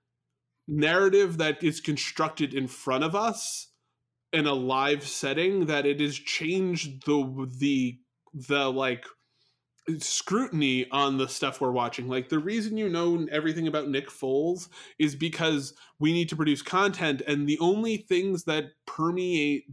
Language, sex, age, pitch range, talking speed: English, male, 20-39, 135-165 Hz, 145 wpm